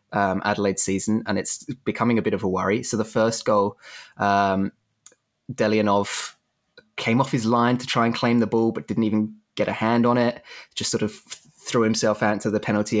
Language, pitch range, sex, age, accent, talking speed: English, 100-115 Hz, male, 20-39, British, 205 wpm